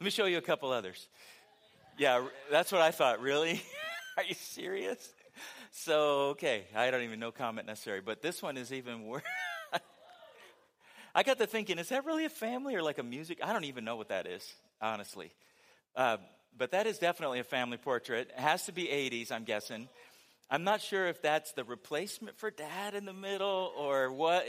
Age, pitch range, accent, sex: 40-59, 140-210 Hz, American, male